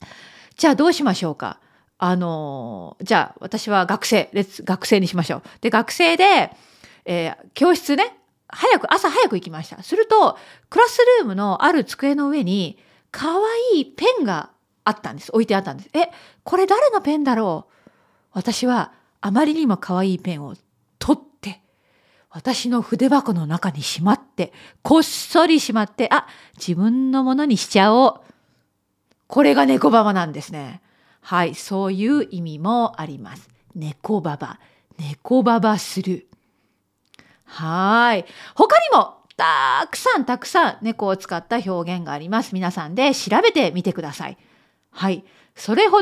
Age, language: 40-59, Japanese